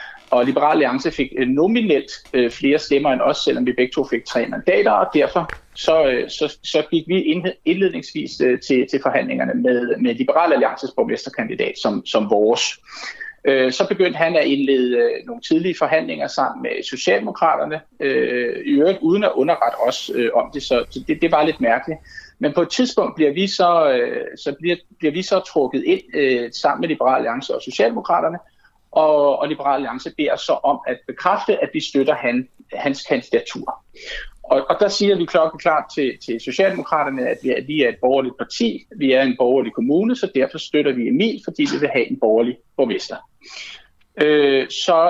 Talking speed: 175 wpm